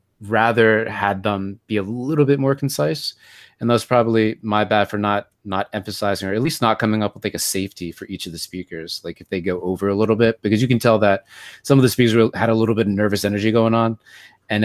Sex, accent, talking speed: male, American, 250 wpm